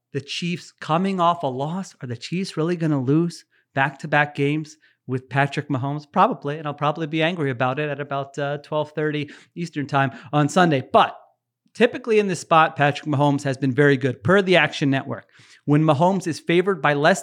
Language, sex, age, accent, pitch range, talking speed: English, male, 30-49, American, 140-180 Hz, 190 wpm